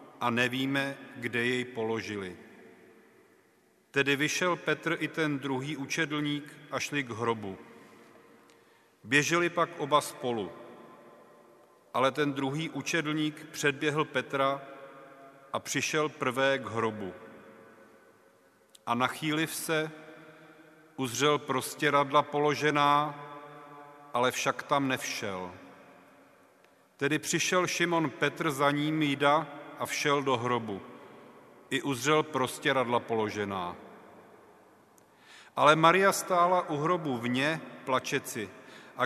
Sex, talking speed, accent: male, 100 wpm, native